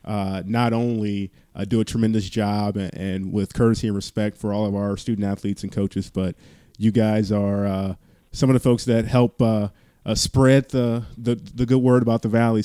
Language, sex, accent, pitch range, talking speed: English, male, American, 100-115 Hz, 210 wpm